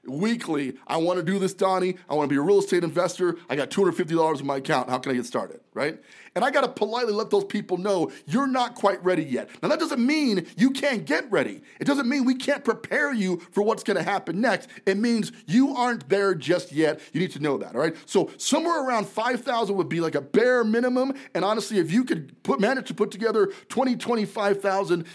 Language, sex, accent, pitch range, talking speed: English, male, American, 170-245 Hz, 235 wpm